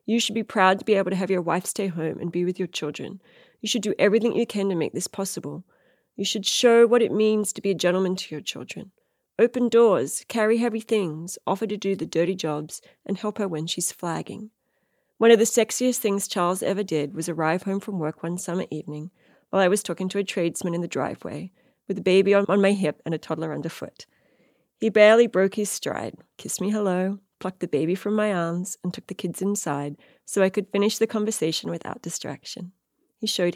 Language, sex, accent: English, female, Australian